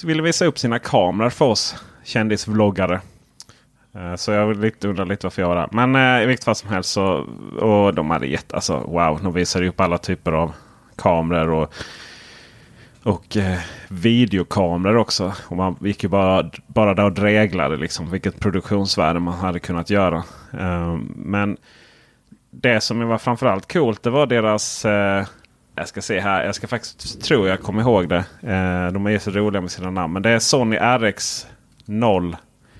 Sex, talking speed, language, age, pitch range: male, 170 wpm, Swedish, 30-49, 95-115 Hz